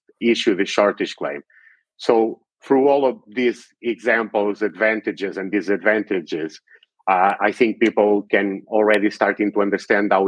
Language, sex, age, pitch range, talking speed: English, male, 50-69, 100-110 Hz, 135 wpm